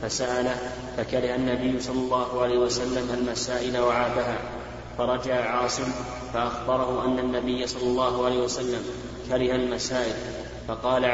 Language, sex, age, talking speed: Arabic, male, 20-39, 115 wpm